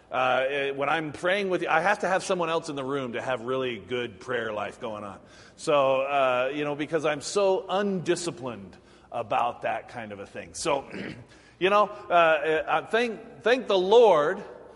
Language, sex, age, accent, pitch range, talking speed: English, male, 40-59, American, 145-205 Hz, 185 wpm